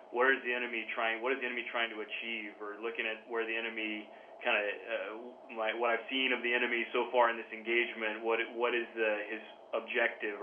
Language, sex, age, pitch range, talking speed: English, male, 20-39, 110-120 Hz, 220 wpm